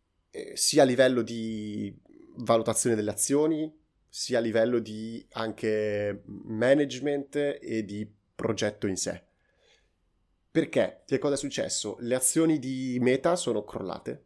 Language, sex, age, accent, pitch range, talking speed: Italian, male, 30-49, native, 105-130 Hz, 120 wpm